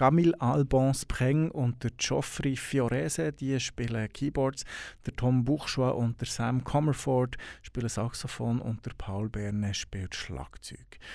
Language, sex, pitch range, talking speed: German, male, 115-135 Hz, 130 wpm